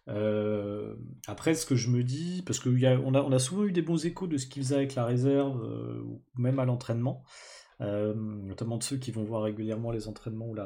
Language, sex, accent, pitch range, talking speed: French, male, French, 115-140 Hz, 235 wpm